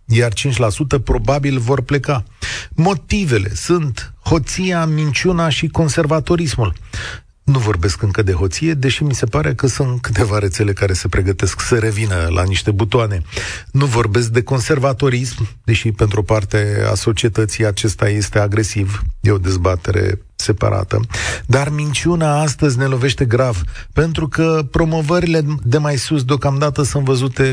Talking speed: 140 wpm